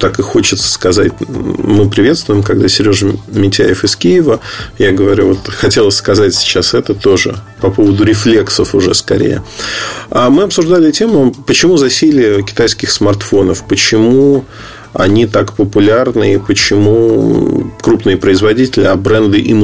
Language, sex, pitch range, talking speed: Russian, male, 105-140 Hz, 130 wpm